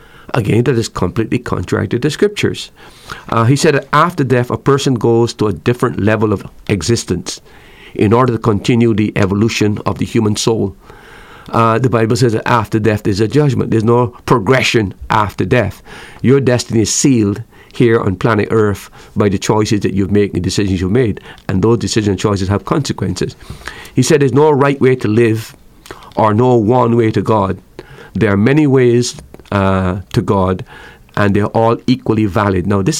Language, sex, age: English, male, 50-69